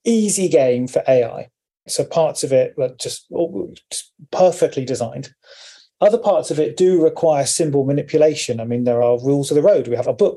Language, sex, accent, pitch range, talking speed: English, male, British, 135-185 Hz, 190 wpm